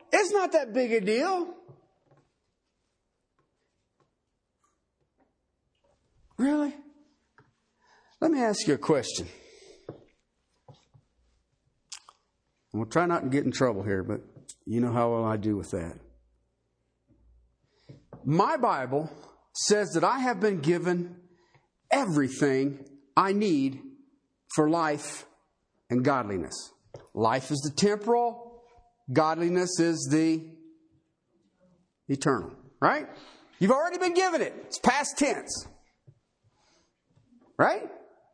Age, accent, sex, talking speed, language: 50-69, American, male, 100 wpm, English